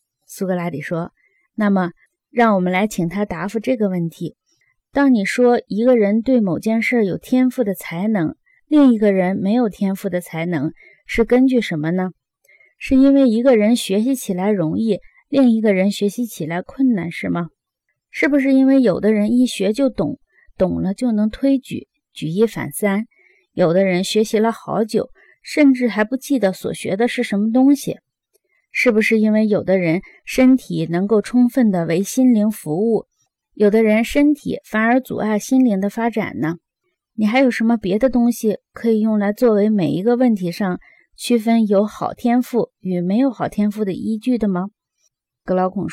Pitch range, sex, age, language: 185-245 Hz, female, 20-39, Chinese